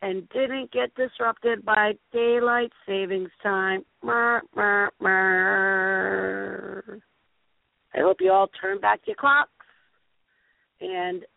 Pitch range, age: 155-215 Hz, 40-59